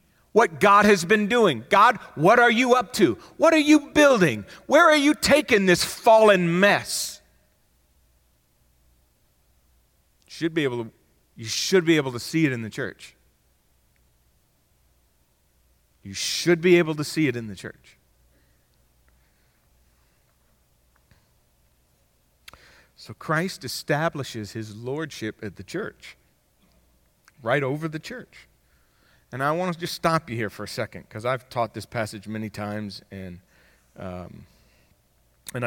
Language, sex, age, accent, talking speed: English, male, 40-59, American, 135 wpm